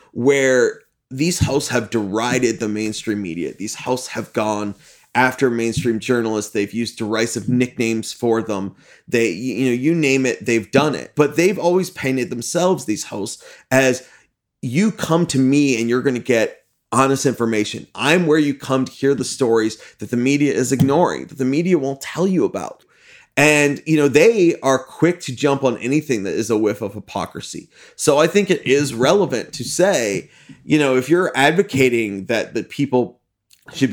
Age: 30-49